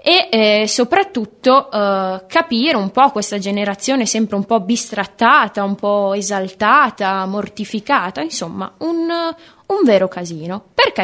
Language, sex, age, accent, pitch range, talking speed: Italian, female, 20-39, native, 200-275 Hz, 125 wpm